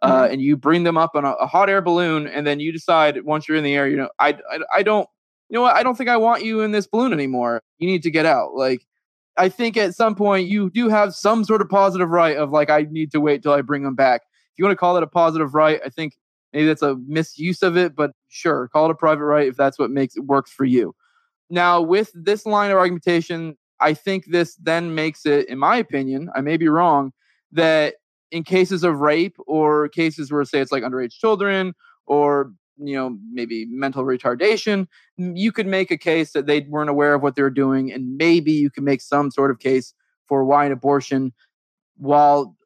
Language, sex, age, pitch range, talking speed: English, male, 20-39, 140-180 Hz, 235 wpm